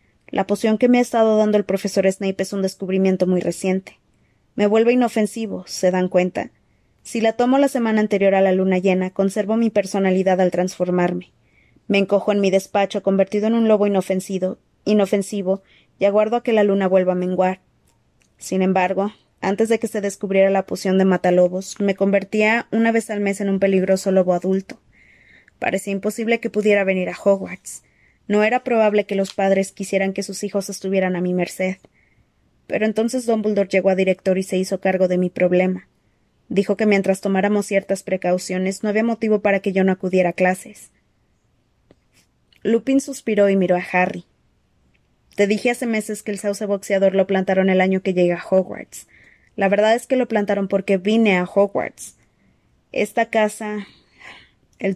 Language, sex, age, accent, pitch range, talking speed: Spanish, female, 20-39, Mexican, 190-210 Hz, 180 wpm